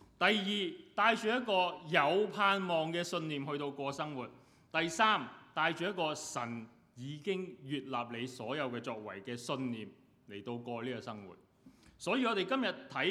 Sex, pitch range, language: male, 120-180 Hz, Chinese